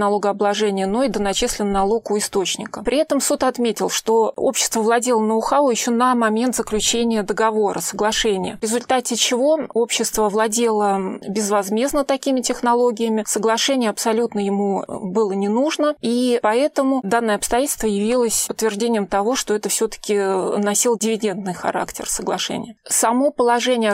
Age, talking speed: 30-49, 130 wpm